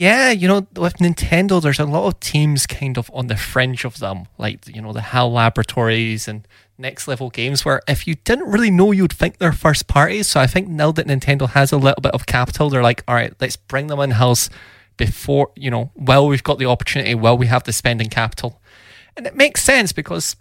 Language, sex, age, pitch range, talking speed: English, male, 20-39, 115-145 Hz, 225 wpm